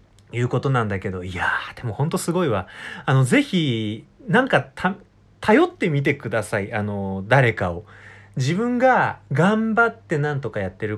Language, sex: Japanese, male